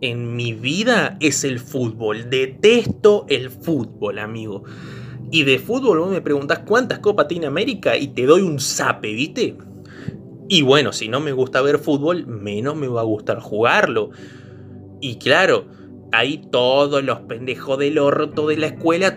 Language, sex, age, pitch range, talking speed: Spanish, male, 20-39, 120-155 Hz, 160 wpm